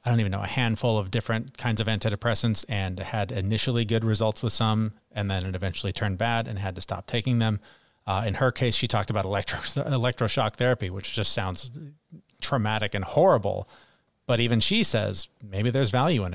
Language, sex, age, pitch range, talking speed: English, male, 30-49, 100-120 Hz, 195 wpm